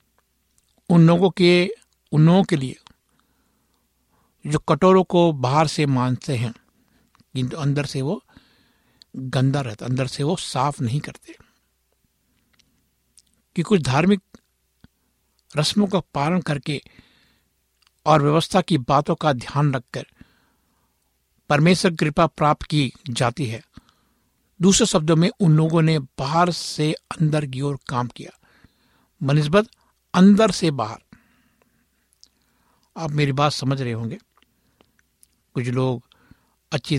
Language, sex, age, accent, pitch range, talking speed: Hindi, male, 60-79, native, 125-165 Hz, 115 wpm